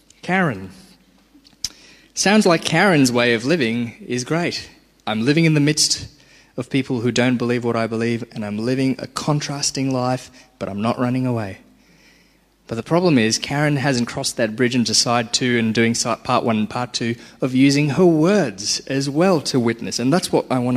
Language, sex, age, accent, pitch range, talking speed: English, male, 20-39, Australian, 115-155 Hz, 190 wpm